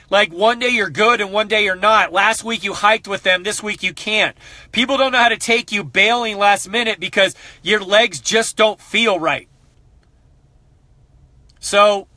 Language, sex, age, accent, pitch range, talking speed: English, male, 30-49, American, 190-220 Hz, 185 wpm